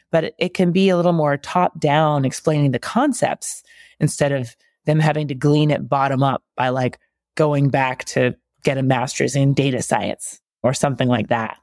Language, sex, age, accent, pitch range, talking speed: English, female, 20-39, American, 135-170 Hz, 175 wpm